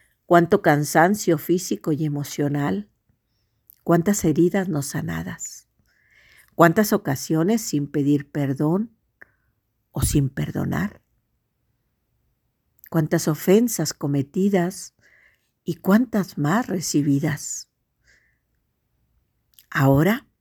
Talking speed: 75 wpm